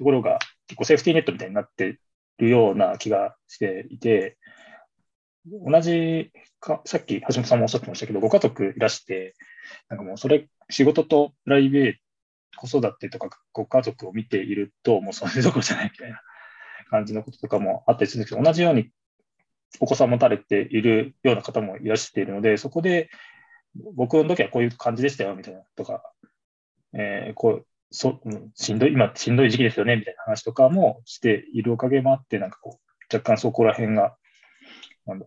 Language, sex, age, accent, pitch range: Japanese, male, 20-39, native, 110-155 Hz